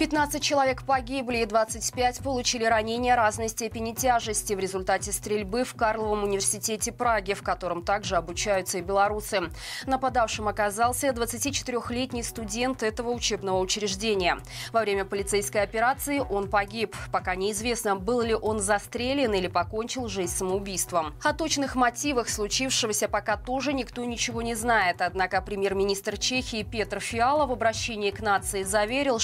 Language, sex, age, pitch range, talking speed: Russian, female, 20-39, 200-240 Hz, 135 wpm